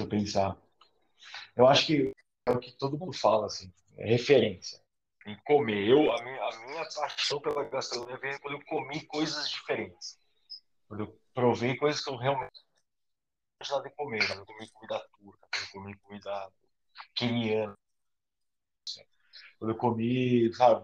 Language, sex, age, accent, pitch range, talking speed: Portuguese, male, 40-59, Brazilian, 110-150 Hz, 160 wpm